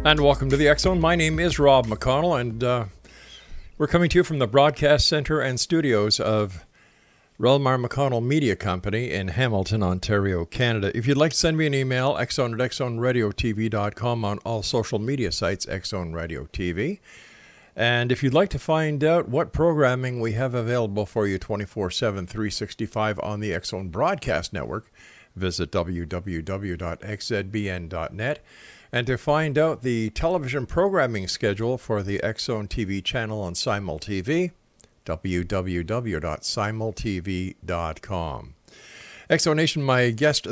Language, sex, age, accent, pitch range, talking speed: English, male, 50-69, American, 100-135 Hz, 140 wpm